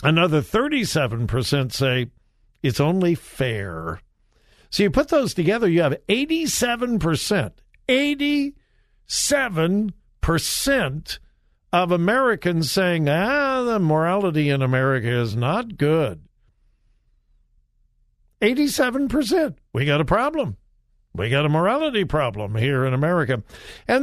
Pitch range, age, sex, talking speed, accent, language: 135-205 Hz, 60-79, male, 100 wpm, American, English